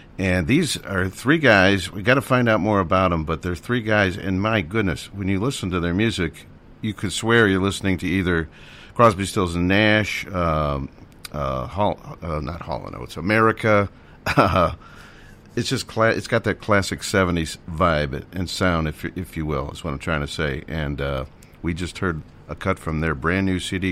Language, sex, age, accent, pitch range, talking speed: English, male, 50-69, American, 80-100 Hz, 200 wpm